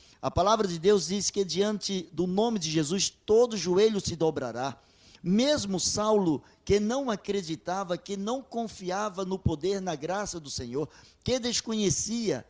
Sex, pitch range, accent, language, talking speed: male, 170-220 Hz, Brazilian, Portuguese, 150 wpm